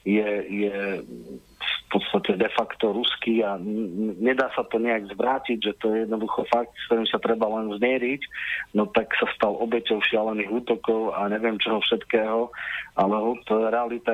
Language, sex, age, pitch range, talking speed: Slovak, male, 40-59, 105-115 Hz, 155 wpm